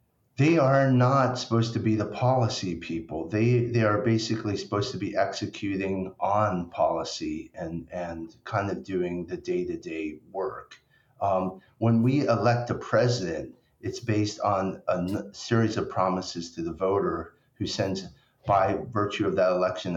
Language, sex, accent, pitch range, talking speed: English, male, American, 90-120 Hz, 155 wpm